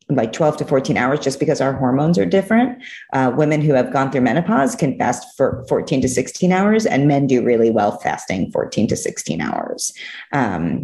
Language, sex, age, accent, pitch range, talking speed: English, female, 30-49, American, 125-170 Hz, 200 wpm